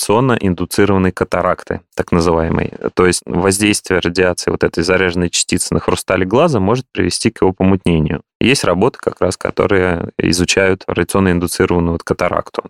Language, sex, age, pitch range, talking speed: Russian, male, 20-39, 85-100 Hz, 135 wpm